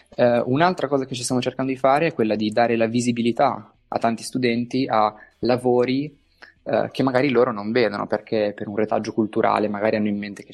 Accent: native